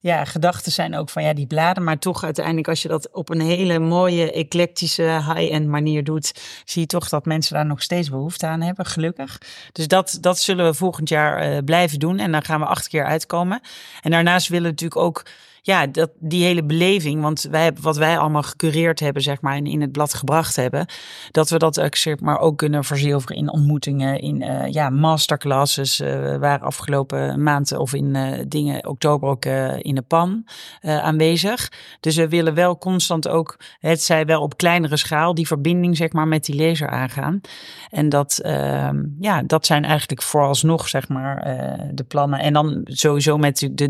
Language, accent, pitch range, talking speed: Dutch, Dutch, 140-165 Hz, 200 wpm